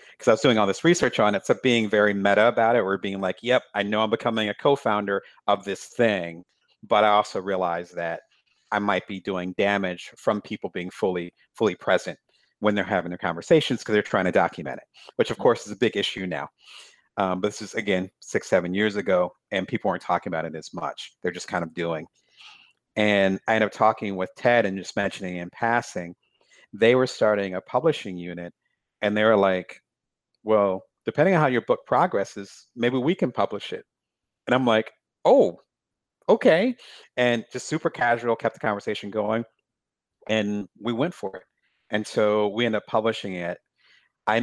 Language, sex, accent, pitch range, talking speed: English, male, American, 95-115 Hz, 195 wpm